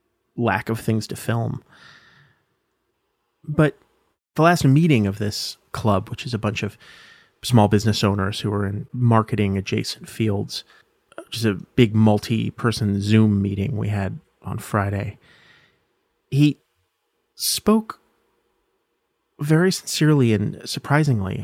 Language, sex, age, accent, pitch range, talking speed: English, male, 30-49, American, 110-130 Hz, 120 wpm